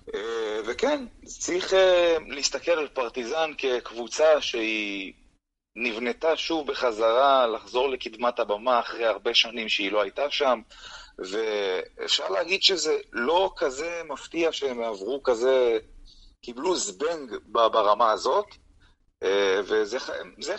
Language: Hebrew